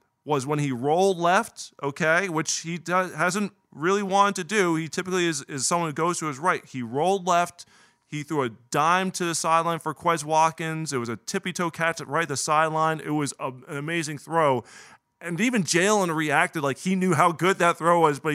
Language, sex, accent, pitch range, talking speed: English, male, American, 140-175 Hz, 205 wpm